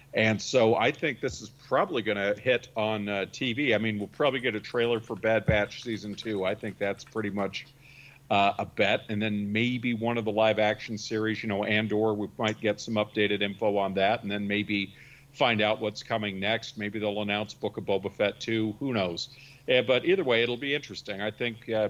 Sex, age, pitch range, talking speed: male, 50-69, 105-135 Hz, 225 wpm